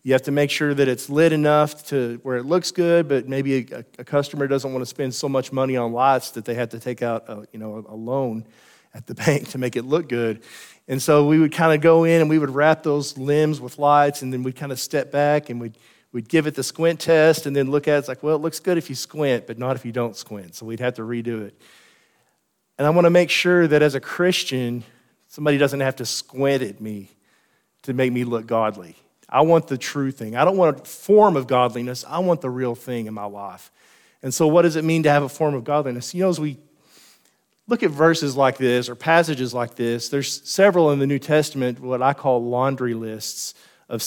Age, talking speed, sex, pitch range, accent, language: 40-59, 250 wpm, male, 120-150 Hz, American, English